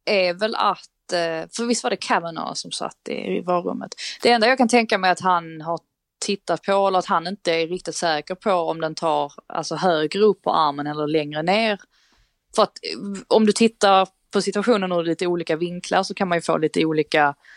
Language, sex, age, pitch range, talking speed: Swedish, female, 20-39, 160-195 Hz, 205 wpm